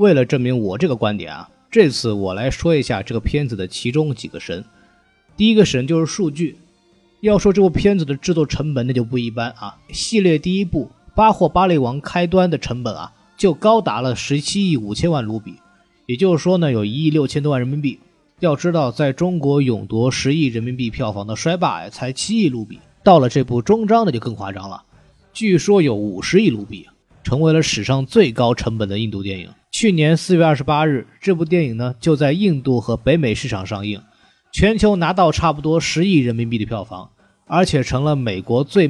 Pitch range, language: 115-175 Hz, Chinese